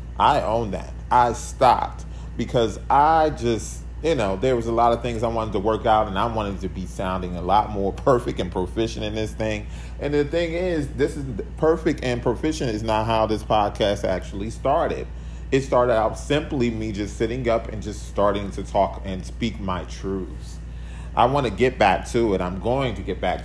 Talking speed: 205 wpm